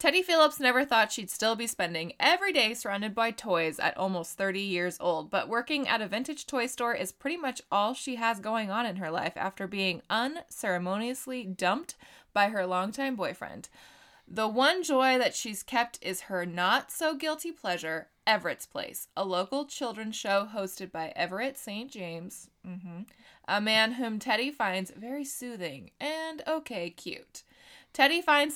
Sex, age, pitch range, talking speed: female, 20-39, 190-265 Hz, 165 wpm